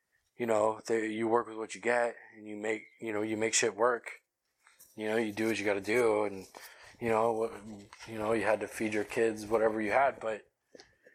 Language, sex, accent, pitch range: English, male, American, 105-120 Hz